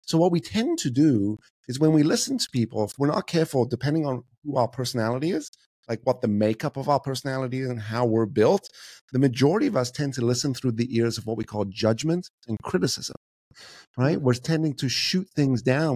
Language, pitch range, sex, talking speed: English, 110-150 Hz, male, 220 wpm